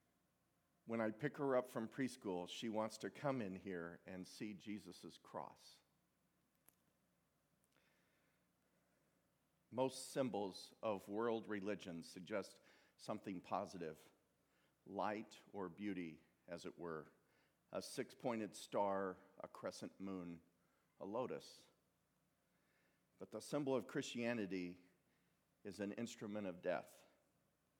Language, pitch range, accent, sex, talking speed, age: English, 95-120 Hz, American, male, 105 wpm, 50-69